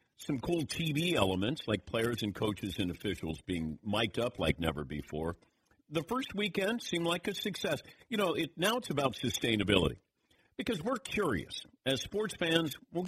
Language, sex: English, male